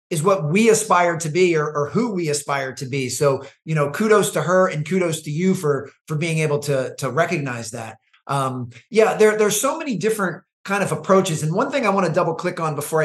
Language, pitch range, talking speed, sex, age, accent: English, 150-195 Hz, 235 wpm, male, 30-49, American